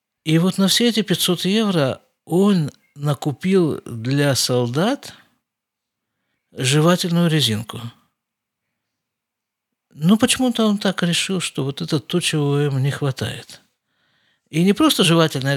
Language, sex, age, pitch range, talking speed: Russian, male, 50-69, 125-175 Hz, 115 wpm